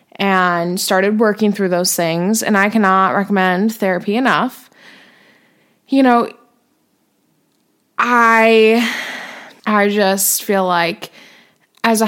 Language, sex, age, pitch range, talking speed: English, female, 20-39, 190-225 Hz, 105 wpm